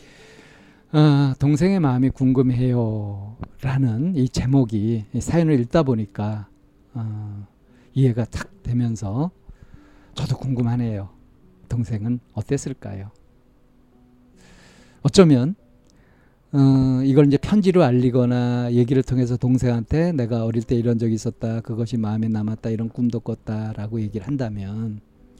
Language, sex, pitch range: Korean, male, 110-140 Hz